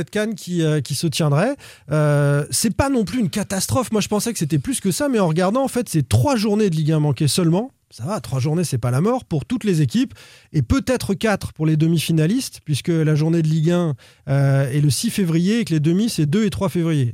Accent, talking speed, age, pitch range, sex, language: French, 260 wpm, 20-39, 145-190 Hz, male, French